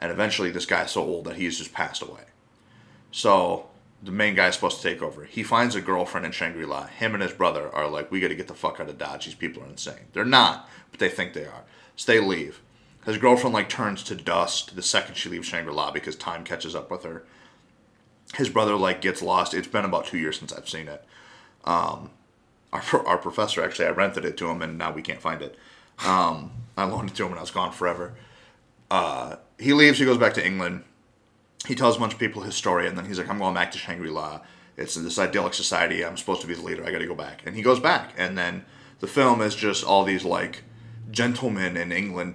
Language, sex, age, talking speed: English, male, 30-49, 240 wpm